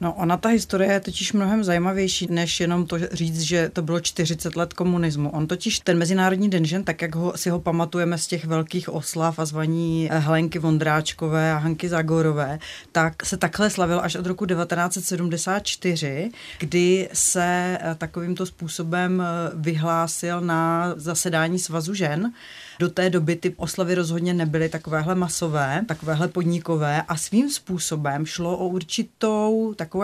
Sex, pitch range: female, 165-185 Hz